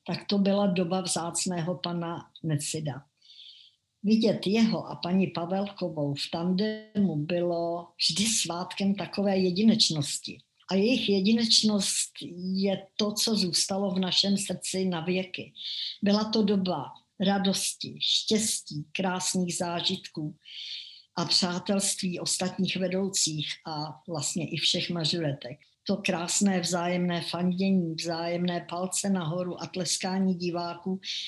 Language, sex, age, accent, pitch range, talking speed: Czech, male, 60-79, native, 170-195 Hz, 105 wpm